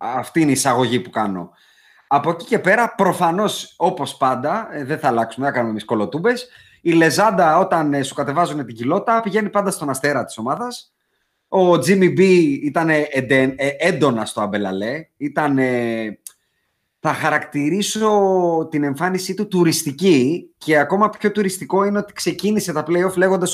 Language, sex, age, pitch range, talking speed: Greek, male, 30-49, 135-210 Hz, 145 wpm